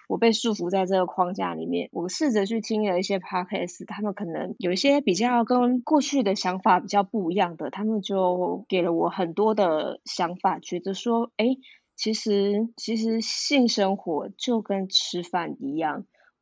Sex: female